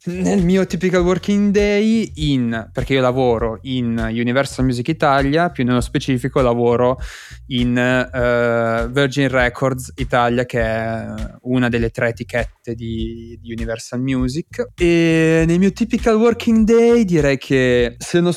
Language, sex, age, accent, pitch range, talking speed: Italian, male, 20-39, native, 115-145 Hz, 135 wpm